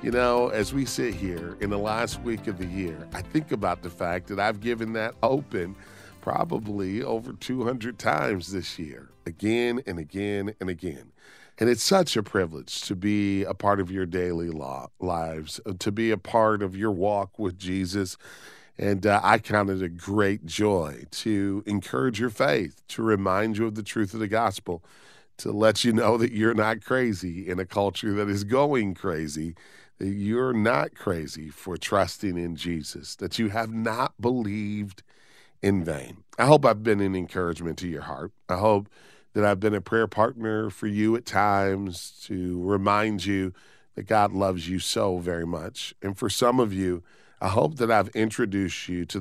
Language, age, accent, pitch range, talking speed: English, 40-59, American, 90-110 Hz, 180 wpm